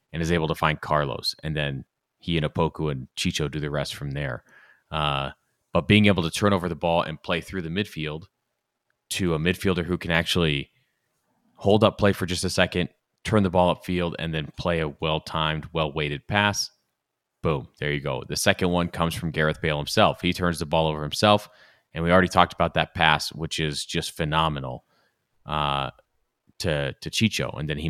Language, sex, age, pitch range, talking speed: English, male, 30-49, 80-95 Hz, 200 wpm